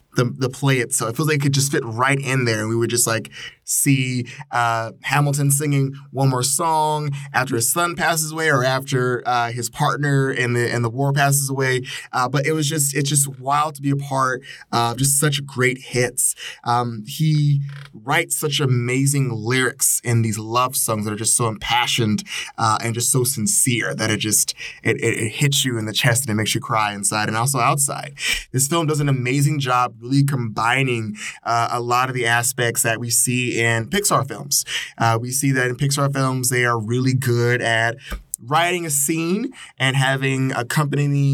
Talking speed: 200 wpm